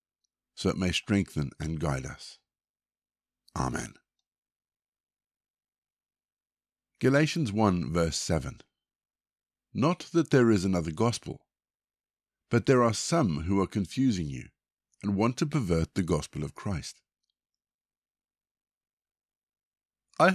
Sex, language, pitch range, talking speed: male, English, 85-125 Hz, 105 wpm